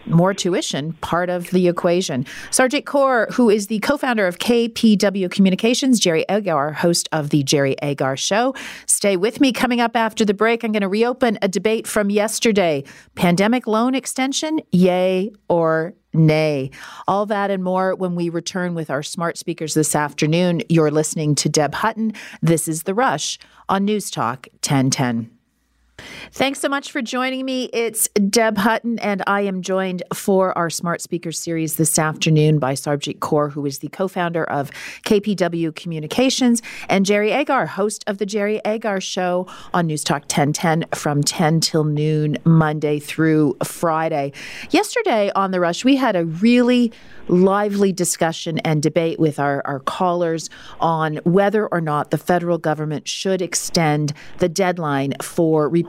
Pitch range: 155-215 Hz